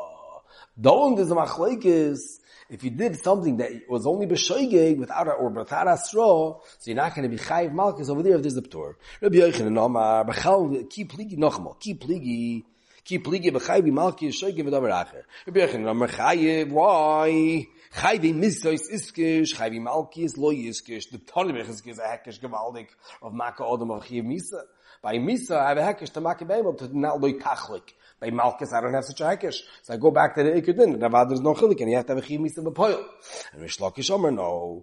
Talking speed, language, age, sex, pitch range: 135 wpm, English, 30-49, male, 130-185 Hz